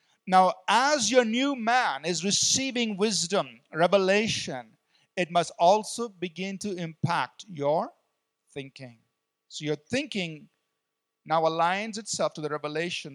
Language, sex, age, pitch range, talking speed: English, male, 40-59, 150-225 Hz, 120 wpm